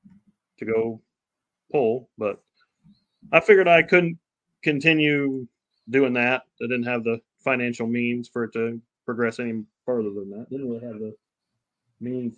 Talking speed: 150 wpm